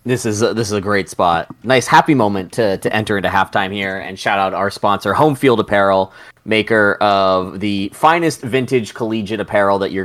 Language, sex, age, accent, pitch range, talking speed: English, male, 20-39, American, 95-115 Hz, 205 wpm